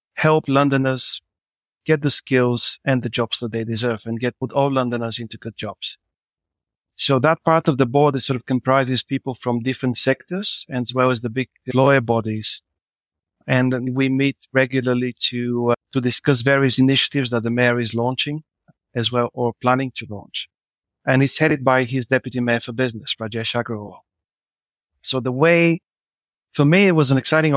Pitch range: 120-135 Hz